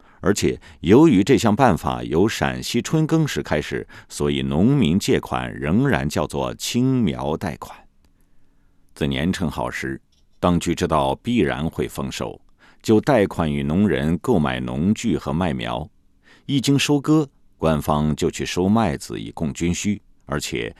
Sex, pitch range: male, 70-105 Hz